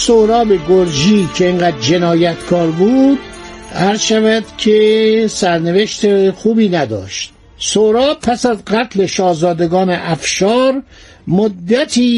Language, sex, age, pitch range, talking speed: Persian, male, 60-79, 170-225 Hz, 90 wpm